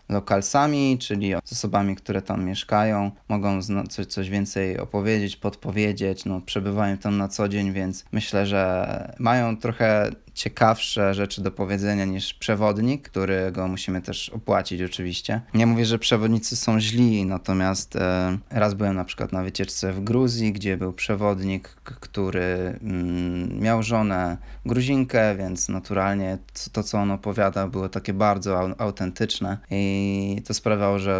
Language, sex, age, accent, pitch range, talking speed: Polish, male, 20-39, native, 95-110 Hz, 140 wpm